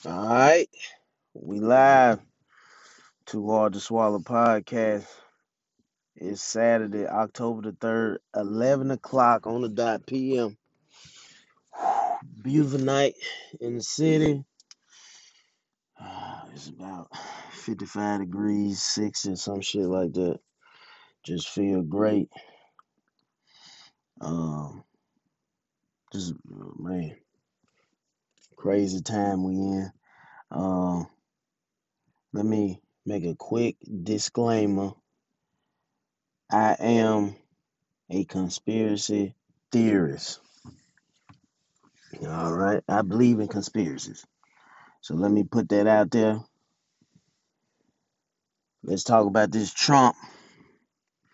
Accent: American